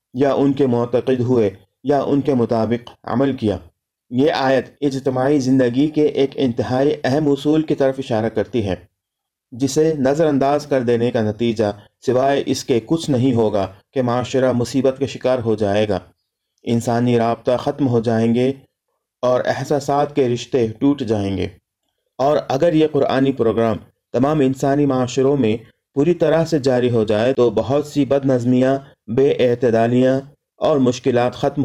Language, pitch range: Urdu, 115-140 Hz